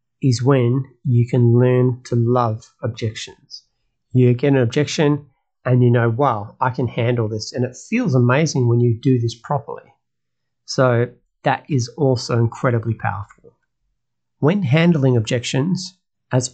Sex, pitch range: male, 120-145 Hz